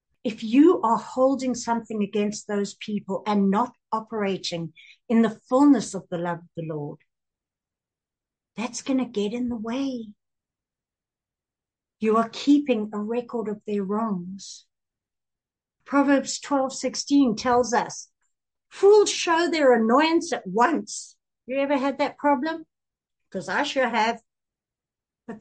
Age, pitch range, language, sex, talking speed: 60-79, 190-260 Hz, English, female, 130 wpm